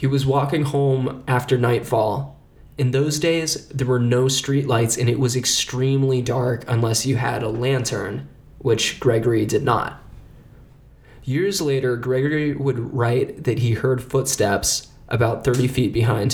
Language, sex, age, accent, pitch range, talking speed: English, male, 20-39, American, 120-135 Hz, 145 wpm